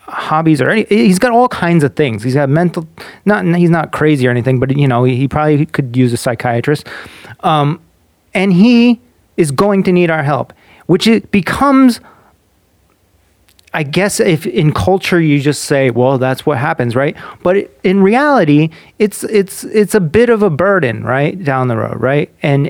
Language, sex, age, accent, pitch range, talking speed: English, male, 30-49, American, 145-200 Hz, 185 wpm